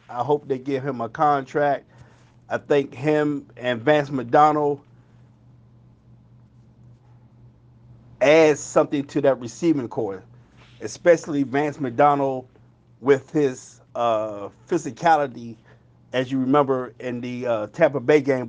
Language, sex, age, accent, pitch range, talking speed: English, male, 50-69, American, 120-150 Hz, 115 wpm